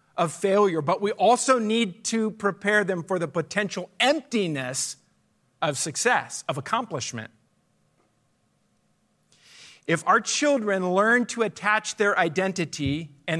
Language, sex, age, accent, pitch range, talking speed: English, male, 50-69, American, 160-225 Hz, 115 wpm